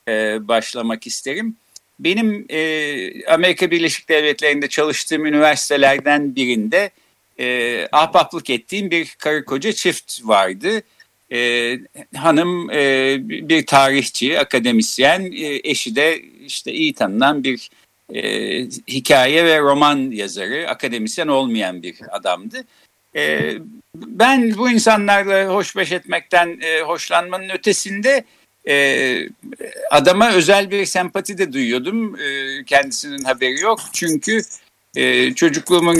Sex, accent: male, native